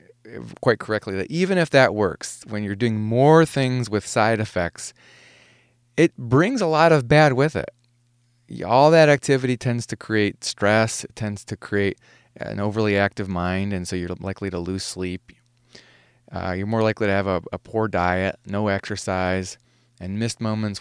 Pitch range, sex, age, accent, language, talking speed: 100-125 Hz, male, 30-49, American, English, 175 wpm